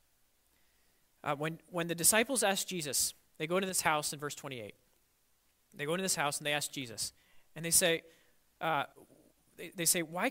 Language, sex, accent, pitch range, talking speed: English, male, American, 150-210 Hz, 185 wpm